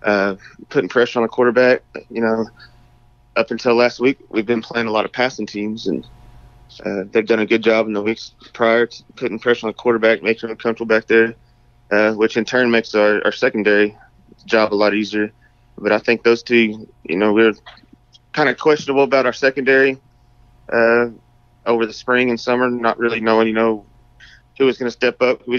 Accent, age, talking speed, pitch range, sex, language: American, 20-39, 200 wpm, 105-120 Hz, male, English